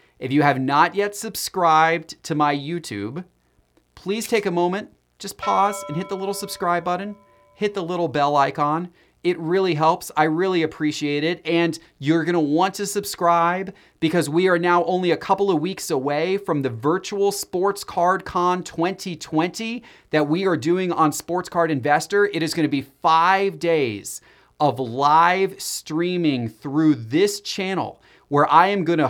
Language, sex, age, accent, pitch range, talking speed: English, male, 30-49, American, 150-185 Hz, 165 wpm